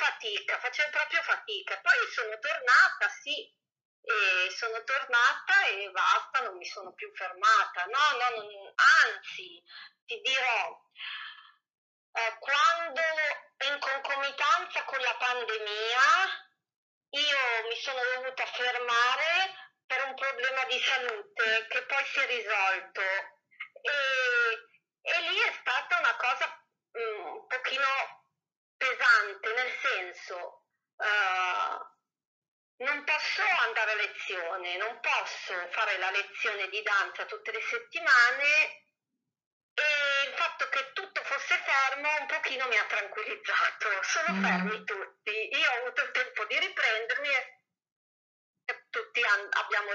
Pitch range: 220-335 Hz